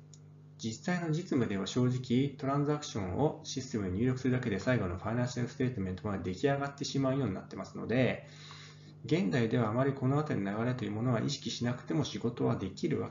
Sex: male